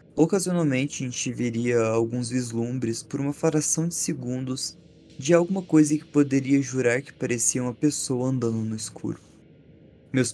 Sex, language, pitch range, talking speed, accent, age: male, Portuguese, 115-140 Hz, 145 wpm, Brazilian, 20-39